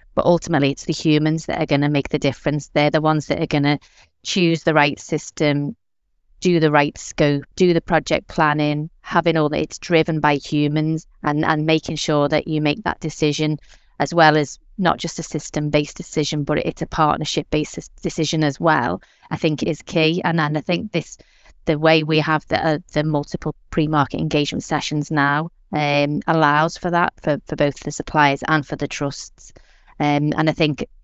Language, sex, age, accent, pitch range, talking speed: English, female, 30-49, British, 145-160 Hz, 195 wpm